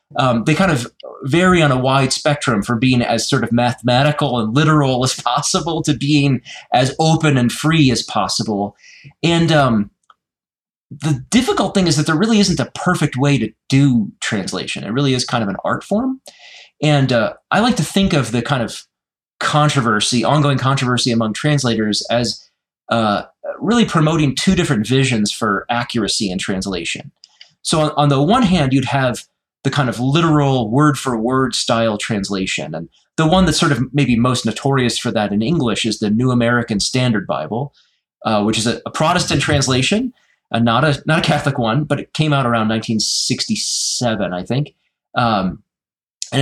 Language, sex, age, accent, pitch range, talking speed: English, male, 30-49, American, 115-150 Hz, 175 wpm